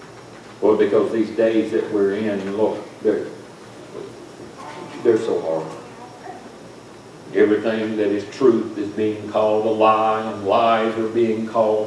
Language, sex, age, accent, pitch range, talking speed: English, male, 60-79, American, 110-170 Hz, 130 wpm